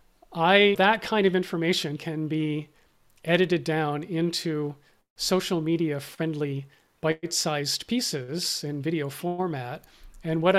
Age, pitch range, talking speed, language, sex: 40-59, 155-190 Hz, 120 wpm, English, male